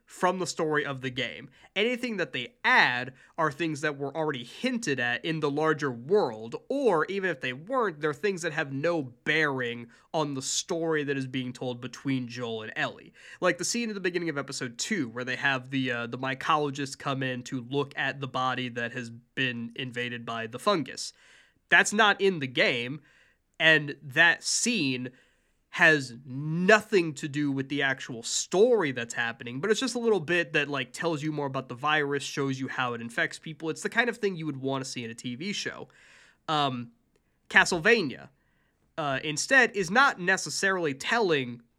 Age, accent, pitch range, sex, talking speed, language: 20-39, American, 130-165 Hz, male, 190 wpm, English